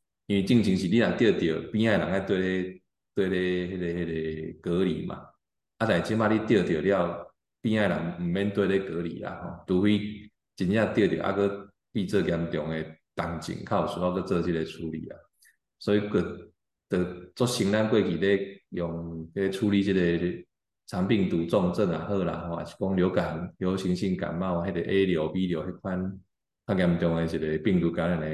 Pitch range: 85-100 Hz